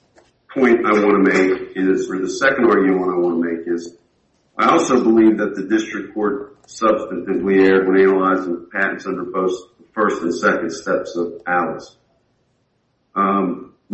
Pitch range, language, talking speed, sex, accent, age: 95-125 Hz, English, 160 wpm, male, American, 50-69